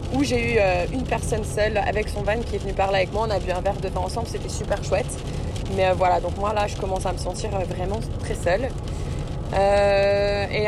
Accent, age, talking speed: French, 20-39, 230 wpm